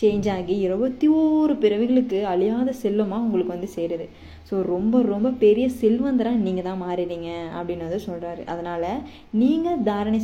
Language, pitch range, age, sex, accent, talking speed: Tamil, 185-240 Hz, 20-39, female, native, 140 wpm